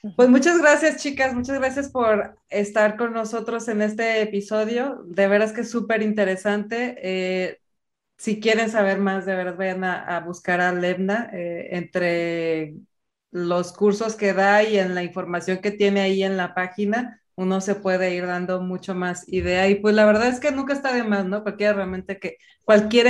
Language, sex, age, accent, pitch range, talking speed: Spanish, female, 20-39, Mexican, 185-225 Hz, 185 wpm